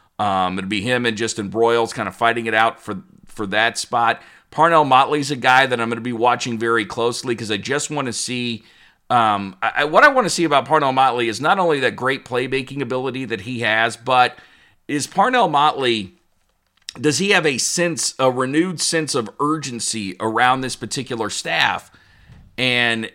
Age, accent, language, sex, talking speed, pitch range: 40-59, American, English, male, 185 wpm, 115-155 Hz